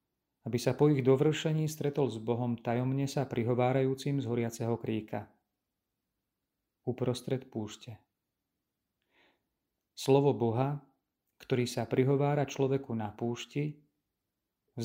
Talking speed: 100 wpm